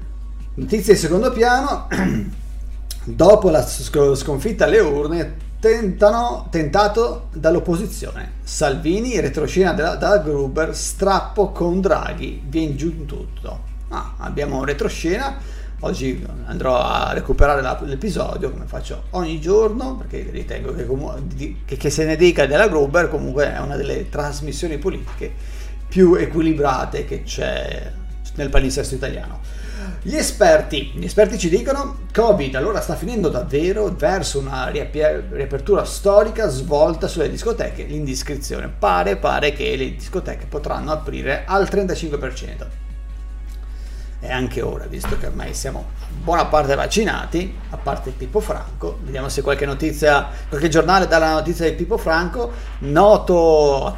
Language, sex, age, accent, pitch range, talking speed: Italian, male, 40-59, native, 130-185 Hz, 125 wpm